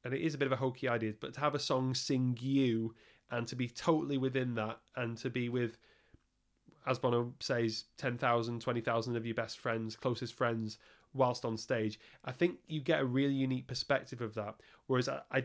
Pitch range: 120-135 Hz